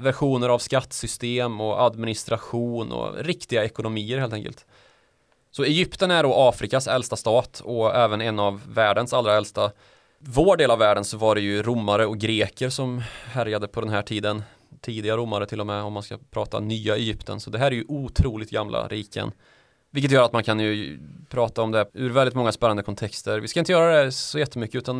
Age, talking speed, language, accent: 20-39, 195 wpm, Swedish, native